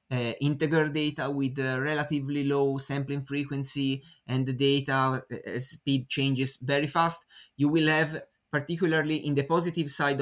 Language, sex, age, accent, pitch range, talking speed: English, male, 30-49, Italian, 130-160 Hz, 145 wpm